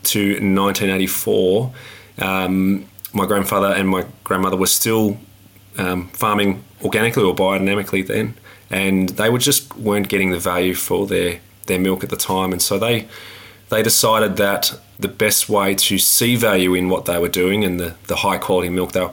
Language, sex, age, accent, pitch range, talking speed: English, male, 20-39, Australian, 95-100 Hz, 175 wpm